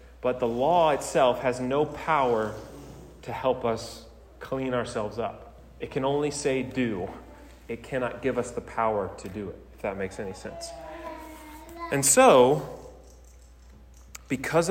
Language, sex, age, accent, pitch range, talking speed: English, male, 30-49, American, 95-140 Hz, 145 wpm